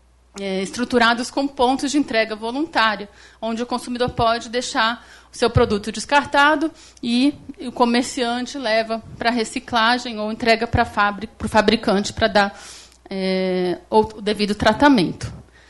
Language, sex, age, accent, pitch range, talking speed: Portuguese, female, 30-49, Brazilian, 220-275 Hz, 120 wpm